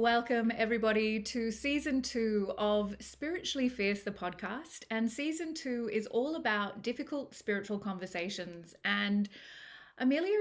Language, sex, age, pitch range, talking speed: English, female, 20-39, 190-235 Hz, 120 wpm